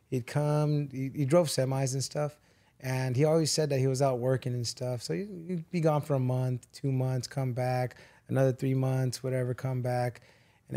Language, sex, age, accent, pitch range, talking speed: English, male, 20-39, American, 125-140 Hz, 210 wpm